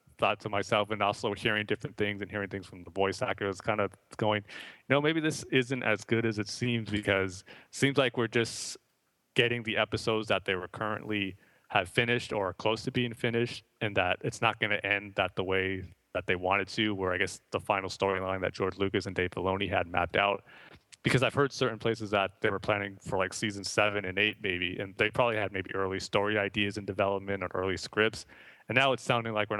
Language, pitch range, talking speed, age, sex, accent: English, 95-115 Hz, 225 wpm, 30-49, male, American